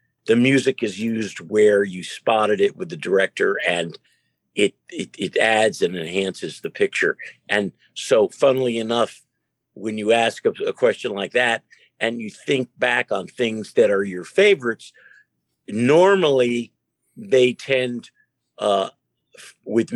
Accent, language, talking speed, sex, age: American, English, 140 wpm, male, 50-69